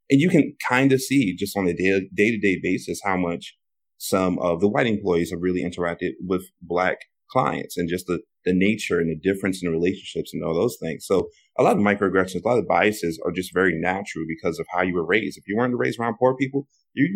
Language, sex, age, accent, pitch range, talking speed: English, male, 30-49, American, 90-105 Hz, 235 wpm